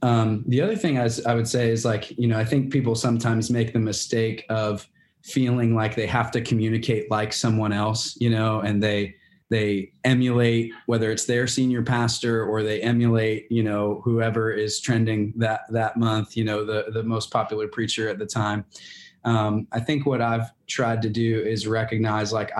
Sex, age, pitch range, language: male, 20-39, 110-120 Hz, English